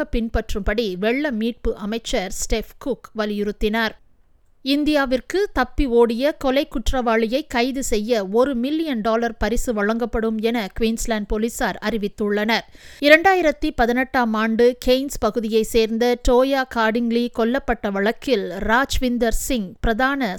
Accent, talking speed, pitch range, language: native, 105 wpm, 225-260 Hz, Tamil